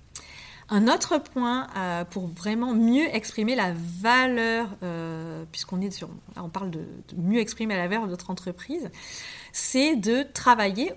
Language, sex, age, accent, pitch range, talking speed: French, female, 30-49, French, 190-255 Hz, 140 wpm